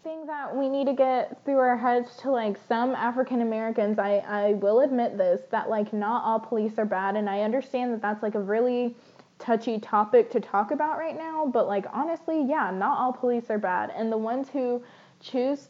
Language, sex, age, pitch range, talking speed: English, female, 10-29, 210-255 Hz, 210 wpm